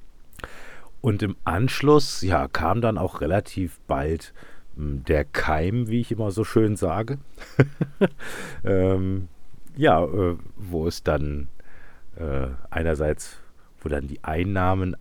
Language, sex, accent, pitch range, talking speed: German, male, German, 80-110 Hz, 110 wpm